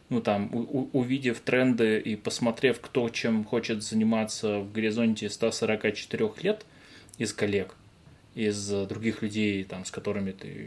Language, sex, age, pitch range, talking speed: Russian, male, 20-39, 105-130 Hz, 130 wpm